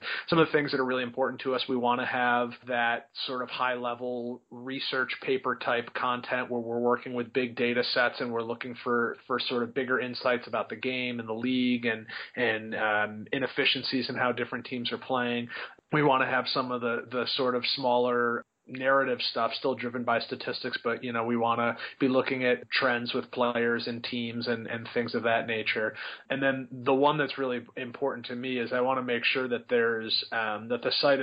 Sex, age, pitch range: male, 30-49, 120-130 Hz